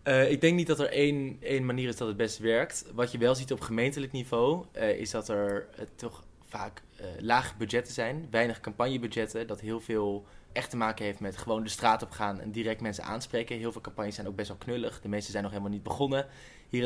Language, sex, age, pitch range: Dutch, male, 20-39, 100-115 Hz